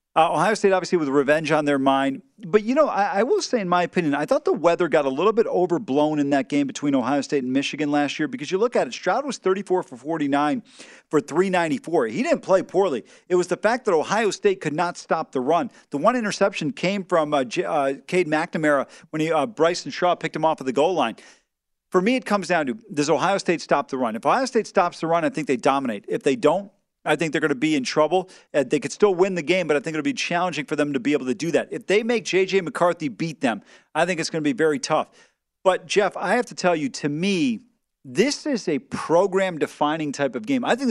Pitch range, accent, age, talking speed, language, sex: 150-210 Hz, American, 40-59, 255 wpm, English, male